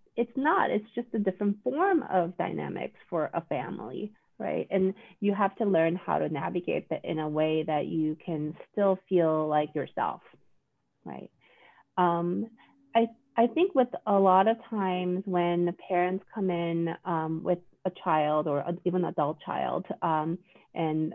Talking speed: 165 wpm